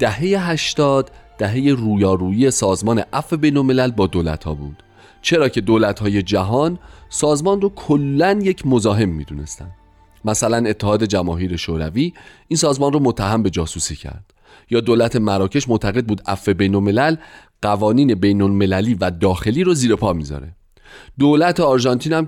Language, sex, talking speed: Persian, male, 150 wpm